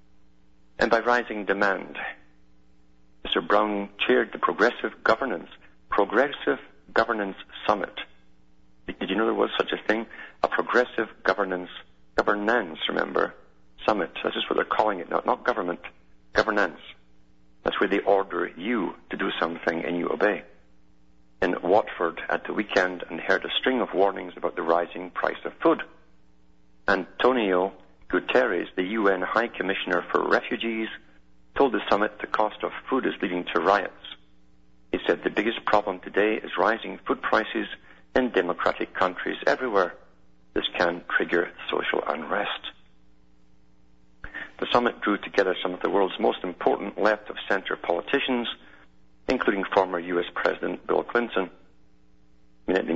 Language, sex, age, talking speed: English, male, 50-69, 140 wpm